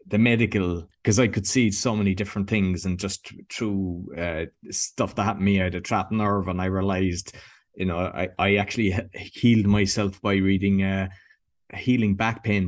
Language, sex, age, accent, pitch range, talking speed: English, male, 20-39, Irish, 100-125 Hz, 195 wpm